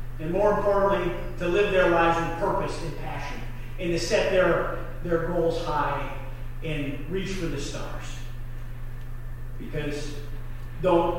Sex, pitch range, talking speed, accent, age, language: male, 130-195 Hz, 135 wpm, American, 40-59, English